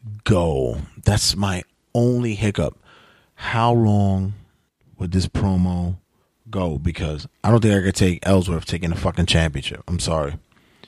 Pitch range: 85-120 Hz